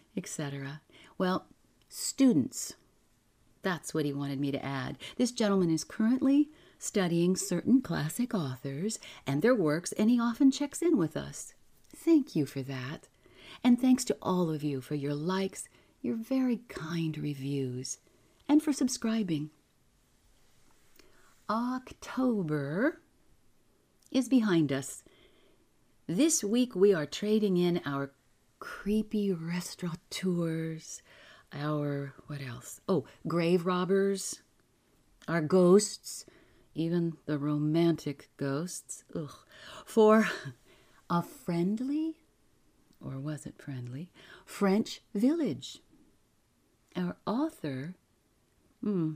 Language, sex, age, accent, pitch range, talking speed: English, female, 50-69, American, 150-220 Hz, 105 wpm